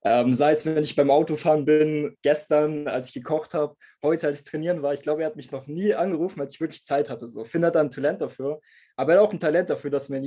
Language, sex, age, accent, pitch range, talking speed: German, male, 20-39, German, 130-155 Hz, 280 wpm